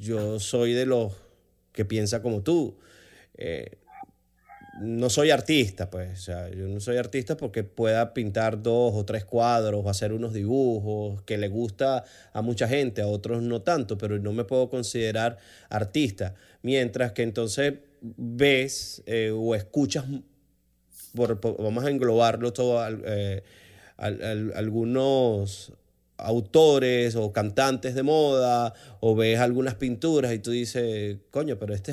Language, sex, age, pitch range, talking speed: Spanish, male, 30-49, 105-135 Hz, 135 wpm